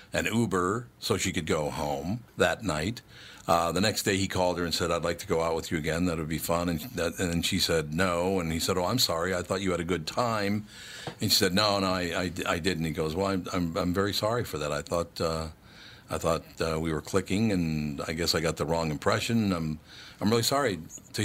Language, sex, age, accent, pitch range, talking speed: English, male, 60-79, American, 85-105 Hz, 255 wpm